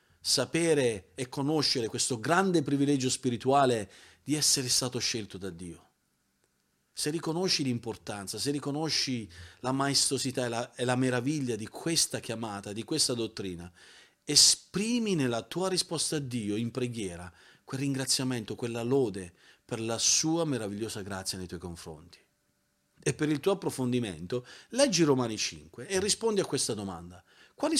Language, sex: Italian, male